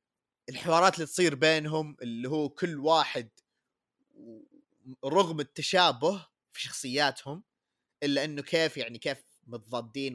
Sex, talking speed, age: male, 105 wpm, 30-49